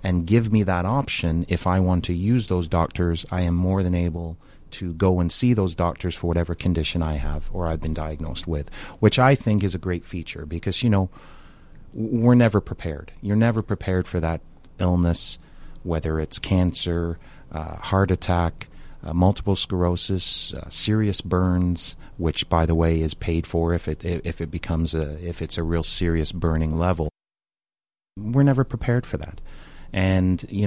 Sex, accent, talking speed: male, American, 180 wpm